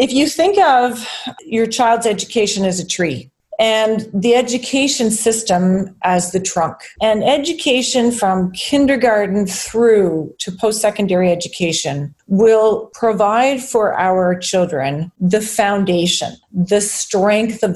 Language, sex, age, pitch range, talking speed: English, female, 40-59, 190-255 Hz, 120 wpm